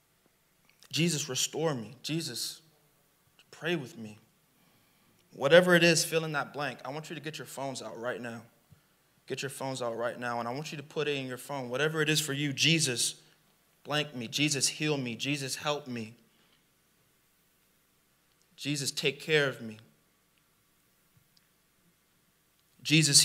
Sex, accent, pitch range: male, American, 135-165 Hz